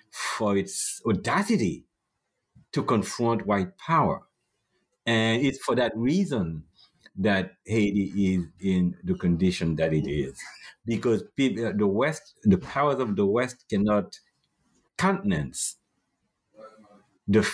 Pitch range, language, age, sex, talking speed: 90-125 Hz, English, 60-79, male, 110 wpm